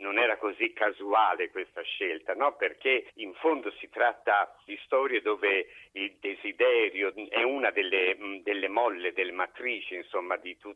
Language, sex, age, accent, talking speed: Italian, male, 50-69, native, 140 wpm